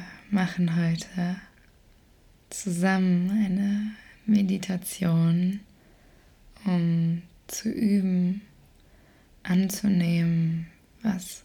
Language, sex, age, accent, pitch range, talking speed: German, female, 20-39, German, 175-200 Hz, 60 wpm